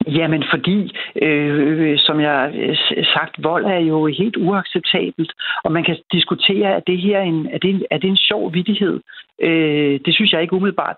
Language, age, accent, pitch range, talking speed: Danish, 60-79, native, 150-180 Hz, 200 wpm